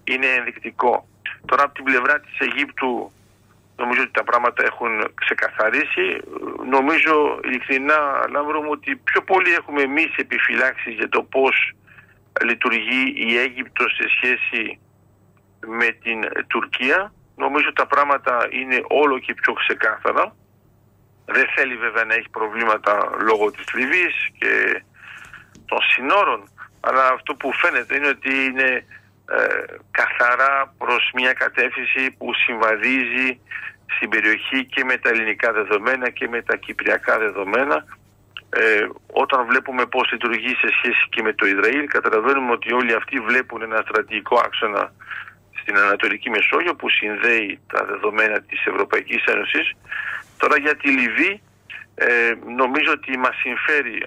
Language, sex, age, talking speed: Greek, male, 50-69, 130 wpm